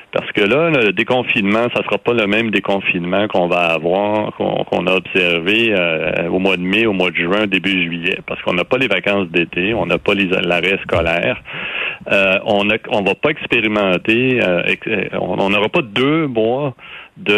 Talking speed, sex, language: 195 wpm, male, French